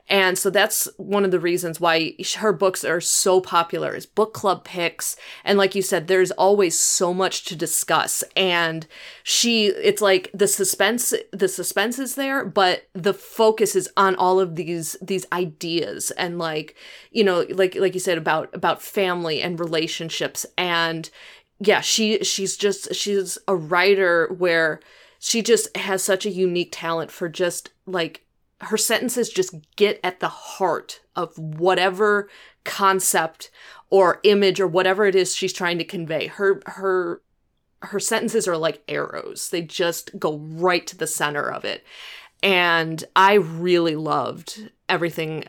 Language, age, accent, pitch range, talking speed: English, 20-39, American, 170-200 Hz, 160 wpm